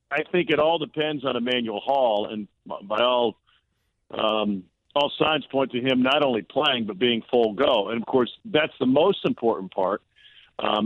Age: 50-69